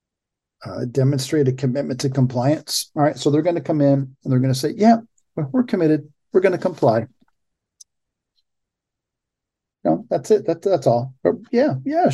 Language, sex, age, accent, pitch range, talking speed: English, male, 50-69, American, 125-150 Hz, 175 wpm